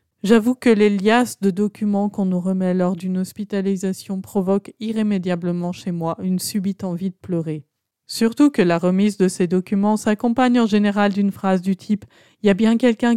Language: French